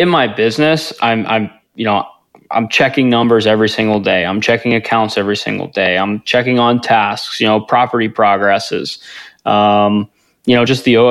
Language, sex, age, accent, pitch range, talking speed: English, male, 20-39, American, 105-120 Hz, 180 wpm